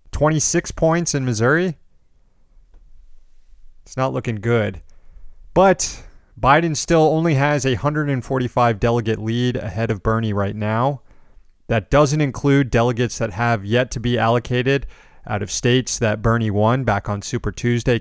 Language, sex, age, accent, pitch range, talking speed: English, male, 30-49, American, 110-140 Hz, 140 wpm